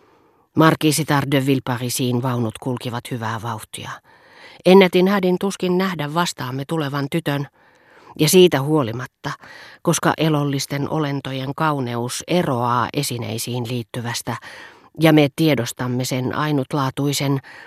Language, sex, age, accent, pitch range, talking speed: Finnish, female, 40-59, native, 125-160 Hz, 100 wpm